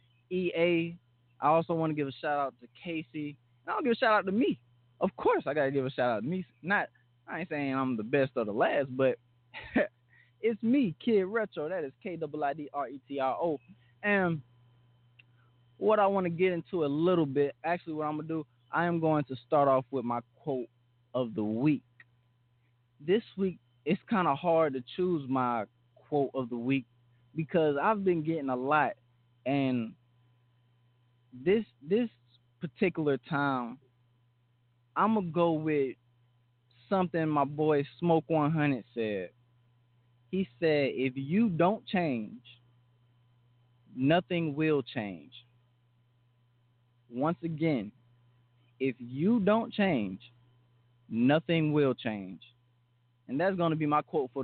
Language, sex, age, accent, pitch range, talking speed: English, male, 20-39, American, 120-160 Hz, 155 wpm